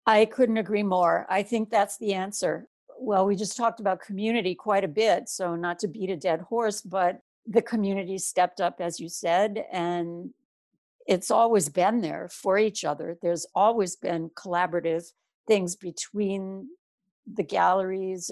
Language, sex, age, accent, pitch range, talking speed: English, female, 60-79, American, 185-225 Hz, 160 wpm